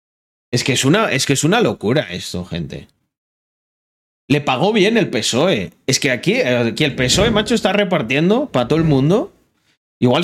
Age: 30-49